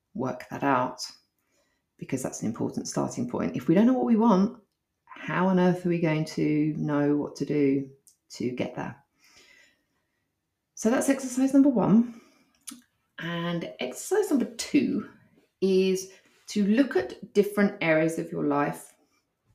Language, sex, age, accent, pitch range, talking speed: English, female, 30-49, British, 165-215 Hz, 145 wpm